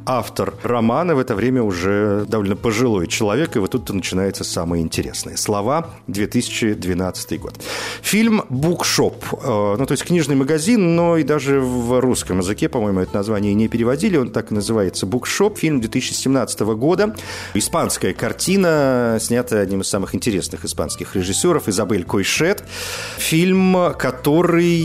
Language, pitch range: Russian, 105-145 Hz